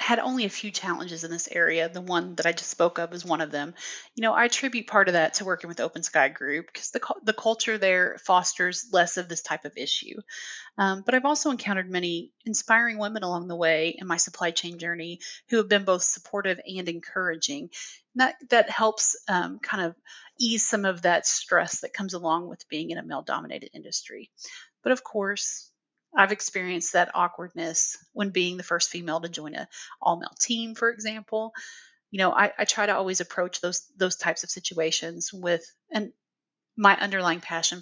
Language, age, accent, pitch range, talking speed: English, 30-49, American, 170-220 Hz, 200 wpm